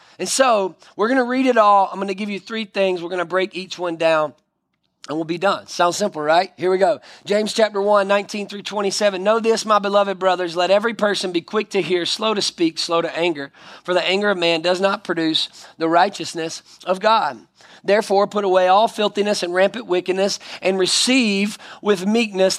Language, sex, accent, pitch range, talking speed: English, male, American, 170-205 Hz, 215 wpm